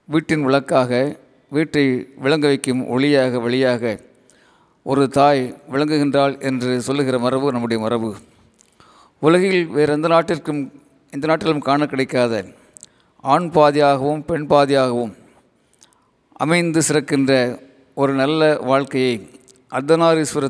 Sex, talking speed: male, 95 wpm